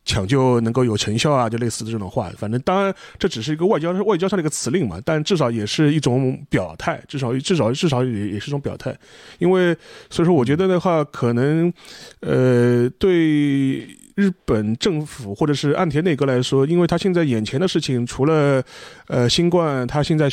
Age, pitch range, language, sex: 30-49, 125-165 Hz, Chinese, male